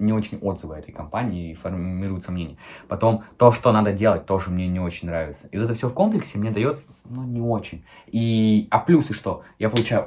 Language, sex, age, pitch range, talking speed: Russian, male, 20-39, 95-115 Hz, 210 wpm